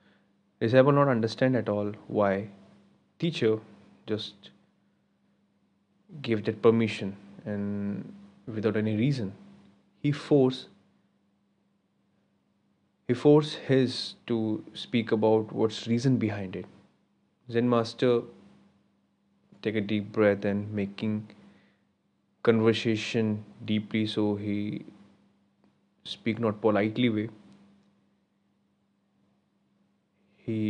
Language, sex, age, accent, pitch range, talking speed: Hindi, male, 20-39, native, 100-115 Hz, 90 wpm